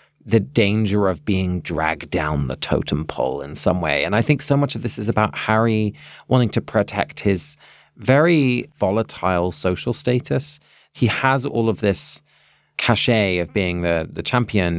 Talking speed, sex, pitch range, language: 165 wpm, male, 95-125 Hz, English